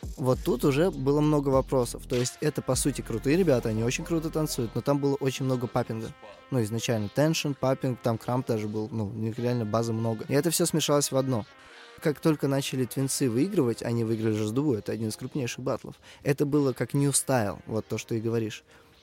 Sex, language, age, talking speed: male, Russian, 20-39, 210 wpm